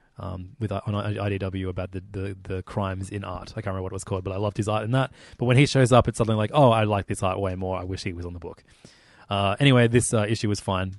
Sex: male